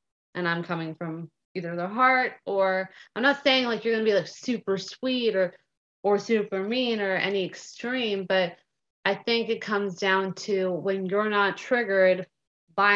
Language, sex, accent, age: English, female, American, 30-49